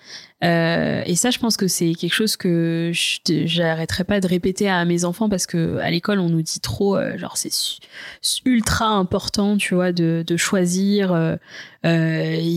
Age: 20-39